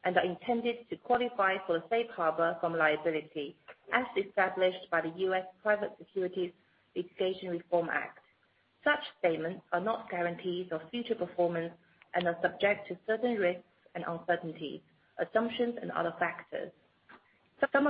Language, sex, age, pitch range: English, female, 40-59, 175-215 Hz